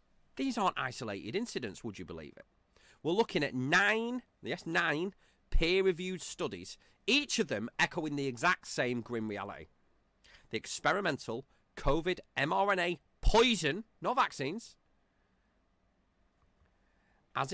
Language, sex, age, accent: English, male, 30-49, British